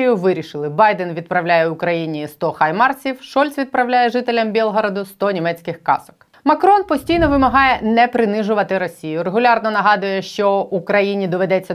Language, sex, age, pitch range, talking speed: Ukrainian, female, 30-49, 180-235 Hz, 125 wpm